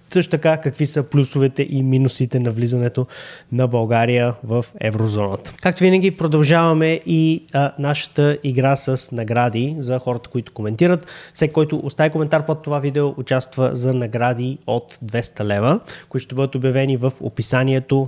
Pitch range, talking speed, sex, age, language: 120-145 Hz, 150 wpm, male, 20-39, Bulgarian